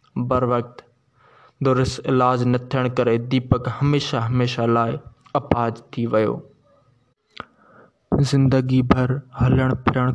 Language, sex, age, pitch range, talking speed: Urdu, male, 20-39, 125-140 Hz, 95 wpm